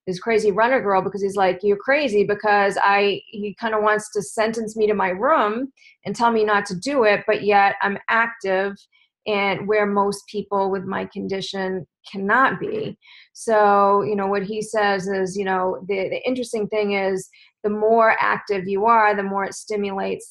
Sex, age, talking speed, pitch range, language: female, 30-49, 190 wpm, 185-205 Hz, English